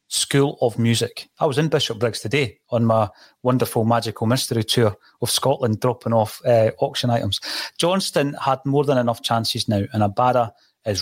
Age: 30-49